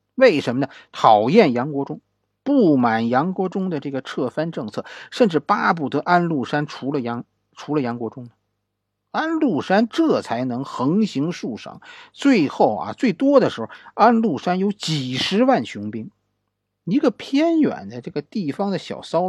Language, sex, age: Chinese, male, 50-69